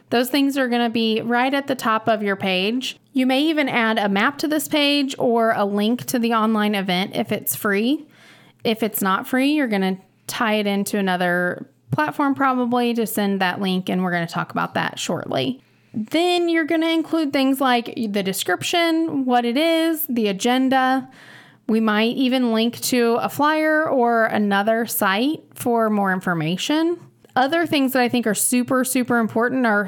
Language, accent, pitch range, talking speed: English, American, 210-265 Hz, 190 wpm